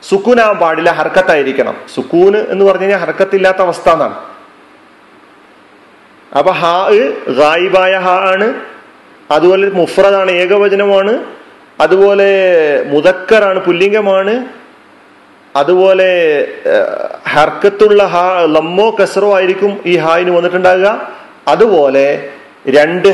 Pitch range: 160-195 Hz